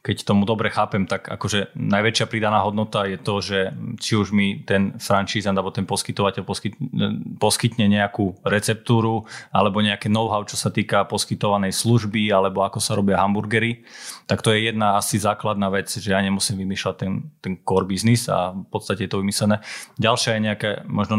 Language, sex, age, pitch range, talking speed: Slovak, male, 20-39, 100-115 Hz, 175 wpm